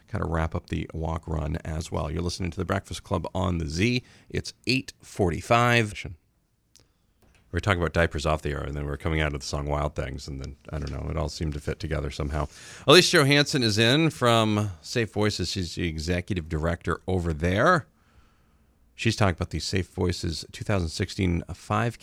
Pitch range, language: 80-105 Hz, English